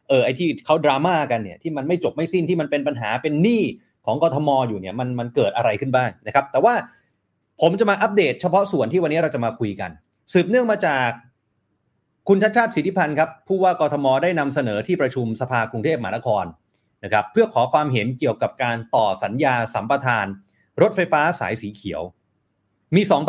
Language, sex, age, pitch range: Thai, male, 30-49, 120-175 Hz